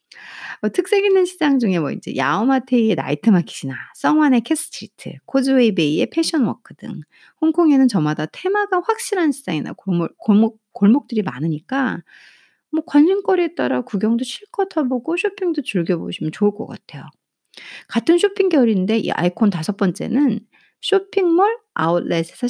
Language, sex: Korean, female